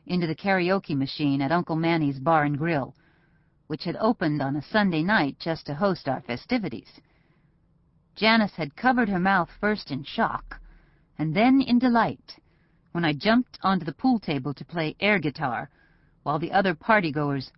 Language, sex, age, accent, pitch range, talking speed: English, female, 40-59, American, 145-185 Hz, 165 wpm